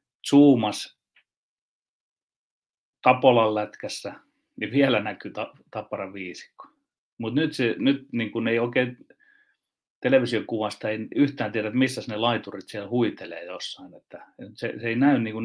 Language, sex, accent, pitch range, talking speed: Finnish, male, native, 105-125 Hz, 120 wpm